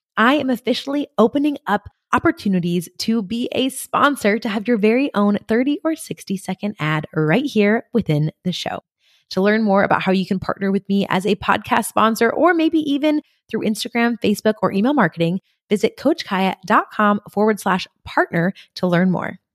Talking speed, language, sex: 170 wpm, English, female